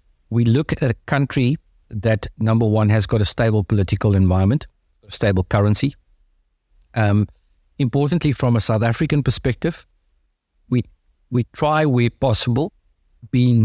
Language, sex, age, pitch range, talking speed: English, male, 50-69, 100-125 Hz, 125 wpm